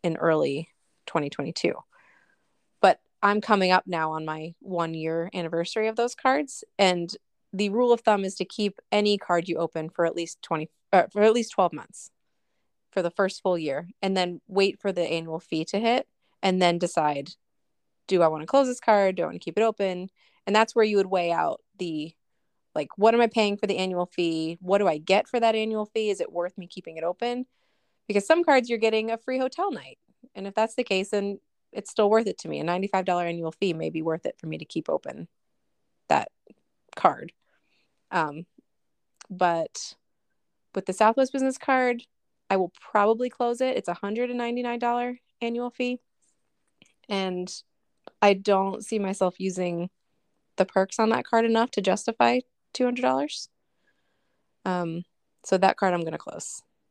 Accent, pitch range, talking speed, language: American, 175-225 Hz, 185 wpm, English